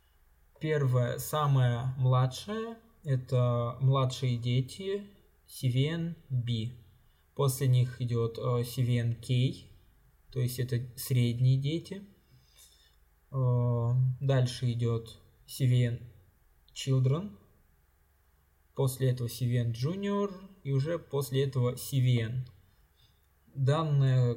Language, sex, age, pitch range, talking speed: Russian, male, 20-39, 115-135 Hz, 80 wpm